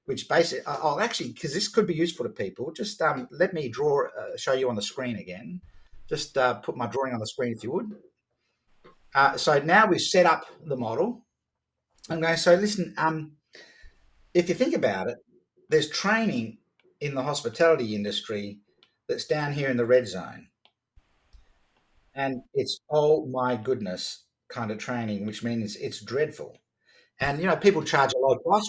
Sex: male